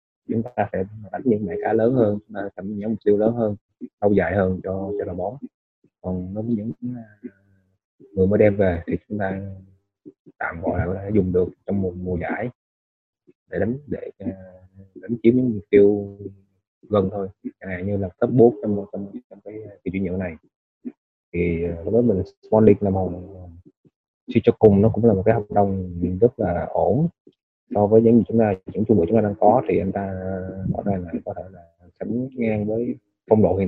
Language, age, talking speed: Vietnamese, 20-39, 200 wpm